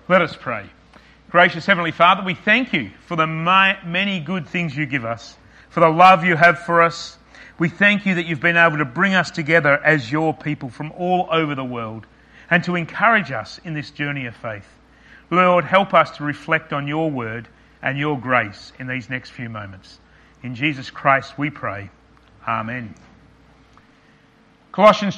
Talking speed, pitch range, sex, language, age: 180 wpm, 135-175 Hz, male, English, 40-59